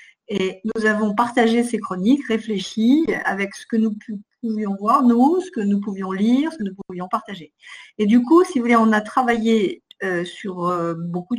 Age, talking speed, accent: 50-69, 195 wpm, French